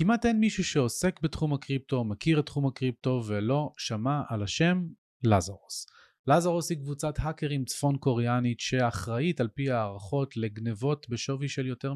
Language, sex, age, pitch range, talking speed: Hebrew, male, 30-49, 110-150 Hz, 145 wpm